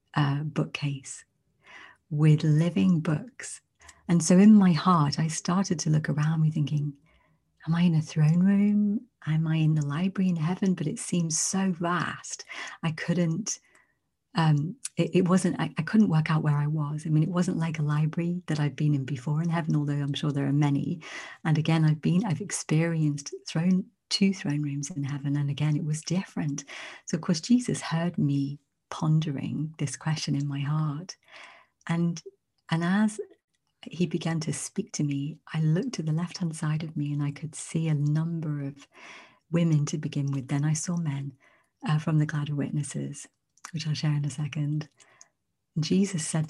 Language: English